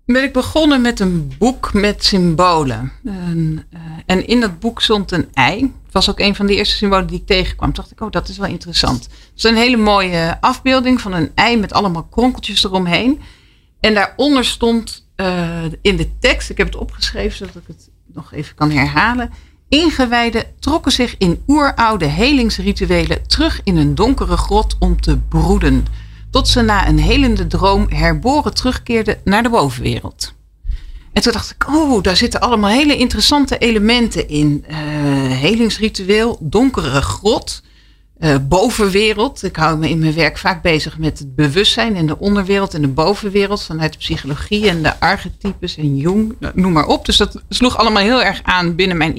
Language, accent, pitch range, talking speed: Dutch, Dutch, 160-230 Hz, 175 wpm